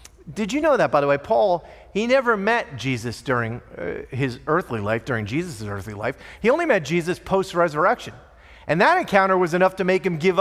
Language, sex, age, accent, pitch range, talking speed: English, male, 40-59, American, 145-235 Hz, 195 wpm